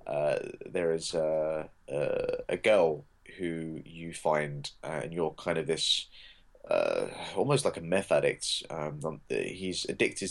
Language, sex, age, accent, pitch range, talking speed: English, male, 20-39, British, 80-100 Hz, 140 wpm